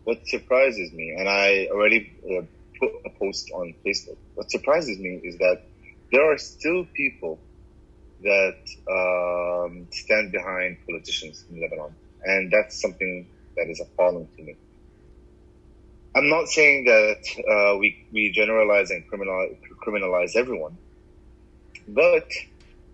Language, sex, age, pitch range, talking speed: English, male, 30-49, 90-120 Hz, 125 wpm